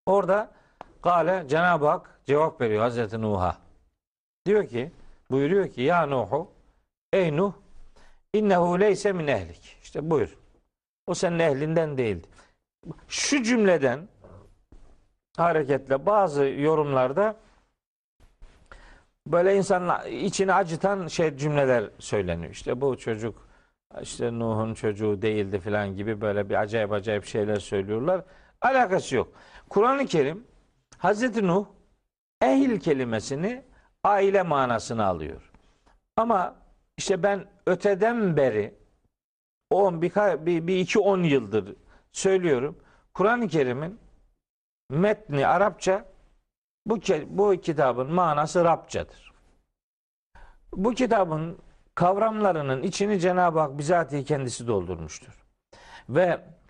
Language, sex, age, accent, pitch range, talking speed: Turkish, male, 50-69, native, 120-195 Hz, 95 wpm